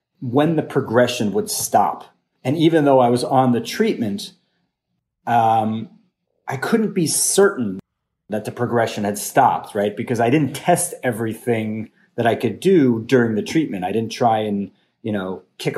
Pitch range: 110-145 Hz